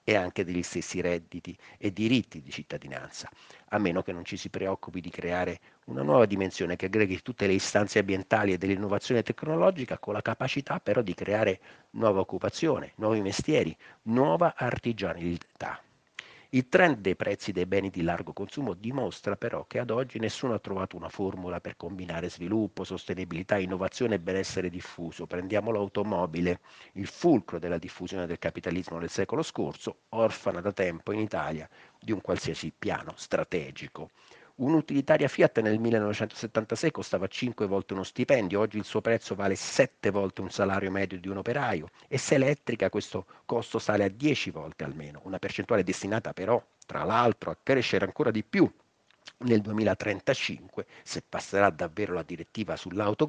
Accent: native